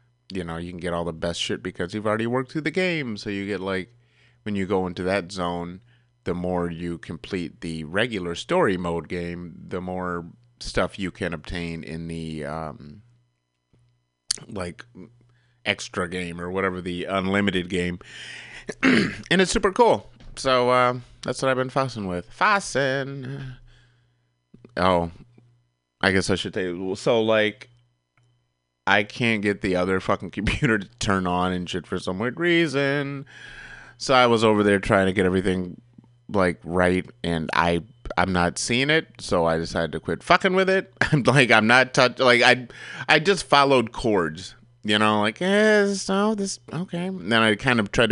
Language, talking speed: English, 175 wpm